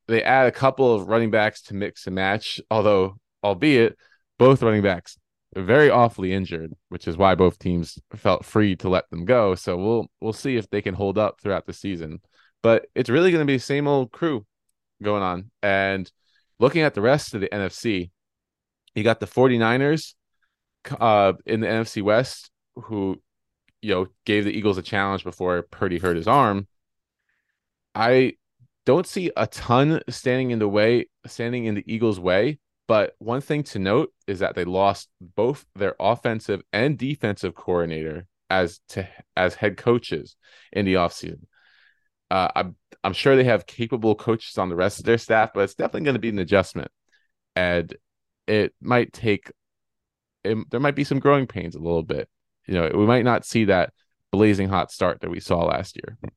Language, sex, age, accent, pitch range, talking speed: English, male, 20-39, American, 95-120 Hz, 185 wpm